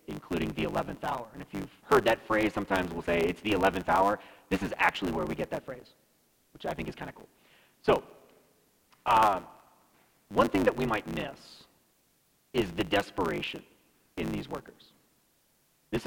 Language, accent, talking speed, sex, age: English, American, 175 wpm, male, 40-59